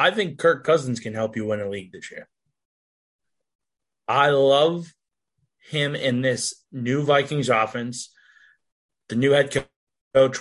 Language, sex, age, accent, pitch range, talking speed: English, male, 20-39, American, 125-160 Hz, 140 wpm